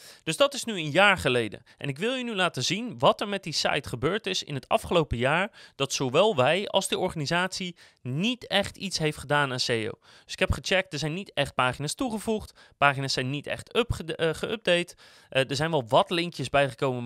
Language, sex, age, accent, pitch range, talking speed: Dutch, male, 30-49, Dutch, 135-195 Hz, 210 wpm